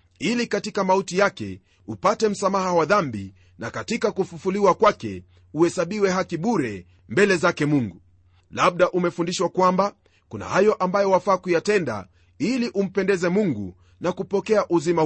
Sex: male